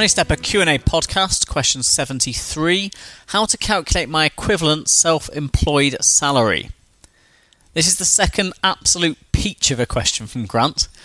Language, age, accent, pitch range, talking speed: English, 30-49, British, 120-170 Hz, 125 wpm